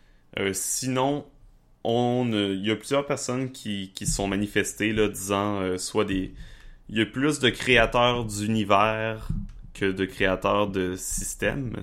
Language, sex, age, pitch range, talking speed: French, male, 20-39, 95-115 Hz, 150 wpm